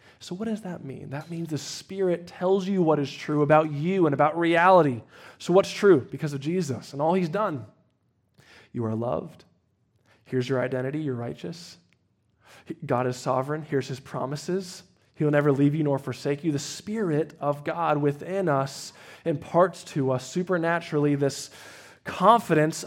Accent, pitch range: American, 145-185 Hz